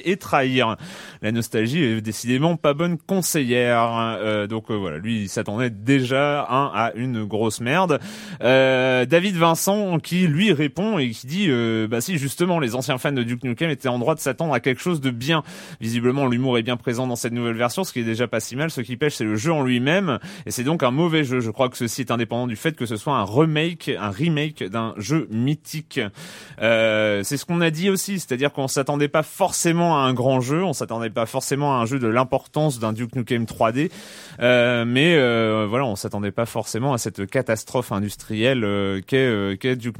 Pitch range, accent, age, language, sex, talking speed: 115-150 Hz, French, 30-49, French, male, 220 wpm